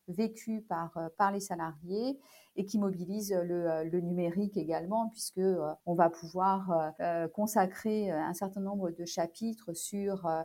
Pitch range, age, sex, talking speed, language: 170-205 Hz, 40-59, female, 125 wpm, French